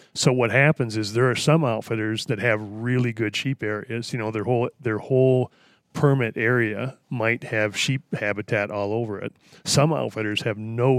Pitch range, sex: 105-130 Hz, male